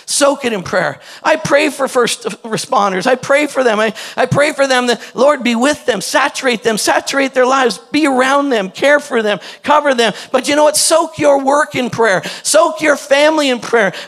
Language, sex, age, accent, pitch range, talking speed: English, male, 50-69, American, 240-300 Hz, 215 wpm